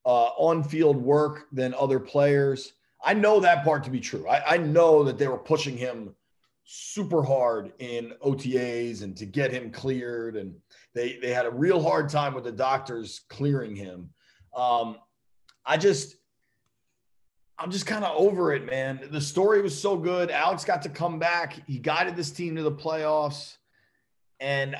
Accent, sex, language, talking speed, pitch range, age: American, male, English, 175 wpm, 130-165 Hz, 30-49